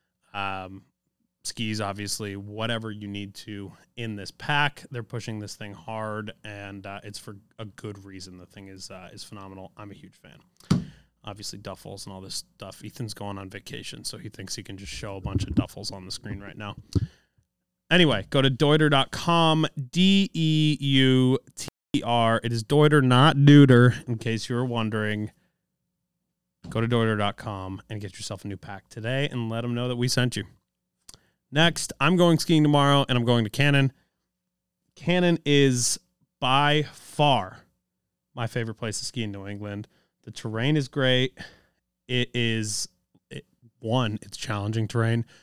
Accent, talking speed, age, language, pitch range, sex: American, 170 wpm, 20-39, English, 105-140 Hz, male